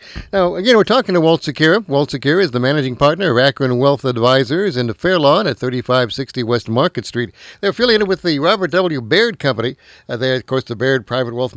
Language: English